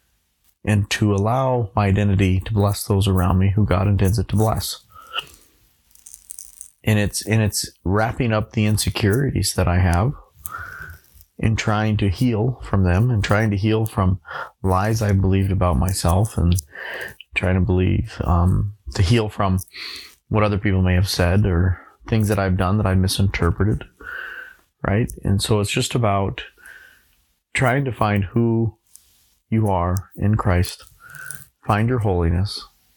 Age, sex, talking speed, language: 30-49, male, 150 wpm, English